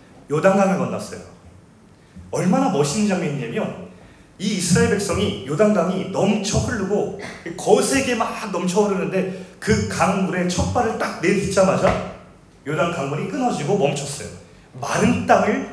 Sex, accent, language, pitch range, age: male, native, Korean, 170-225 Hz, 30-49